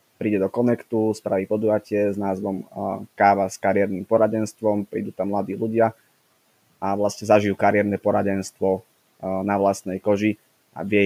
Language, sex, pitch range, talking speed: Slovak, male, 95-110 Hz, 135 wpm